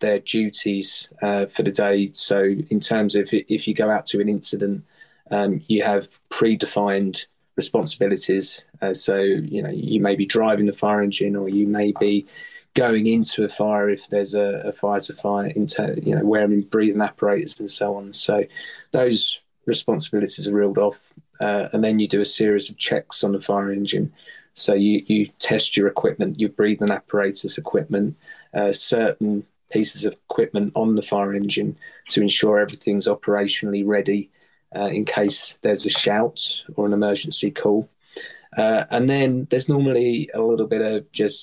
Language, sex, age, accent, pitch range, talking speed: English, male, 20-39, British, 100-110 Hz, 175 wpm